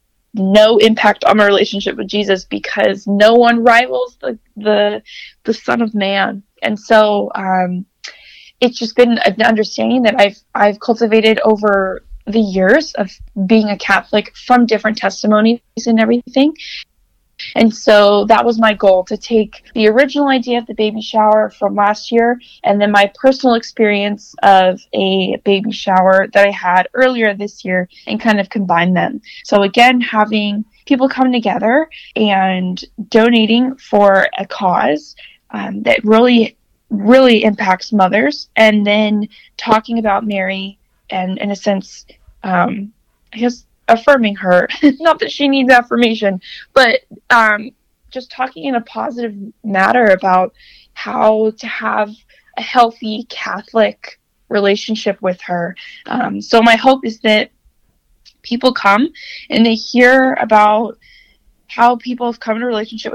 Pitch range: 200-240 Hz